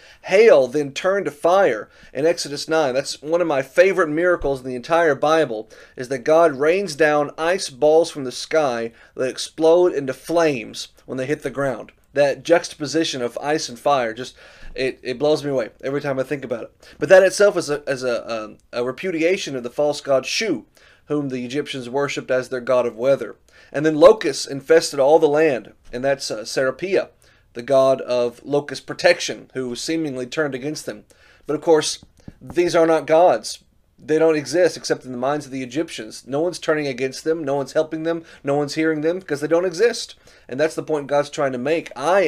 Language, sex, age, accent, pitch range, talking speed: English, male, 30-49, American, 130-160 Hz, 205 wpm